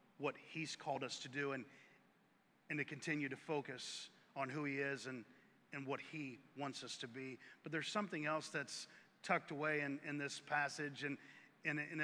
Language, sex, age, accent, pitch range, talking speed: English, male, 40-59, American, 145-170 Hz, 190 wpm